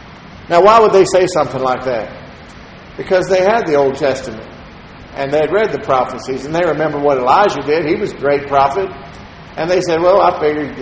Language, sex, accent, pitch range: English, male, American, 145-205 Hz